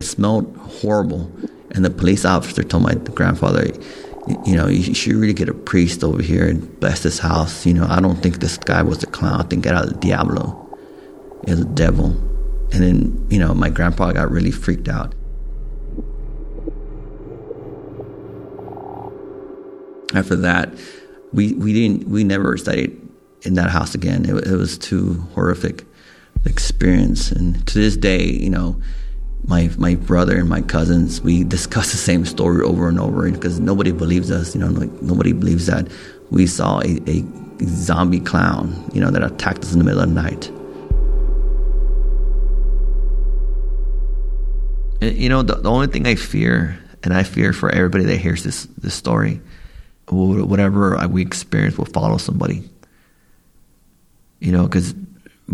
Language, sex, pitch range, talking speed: English, male, 85-100 Hz, 160 wpm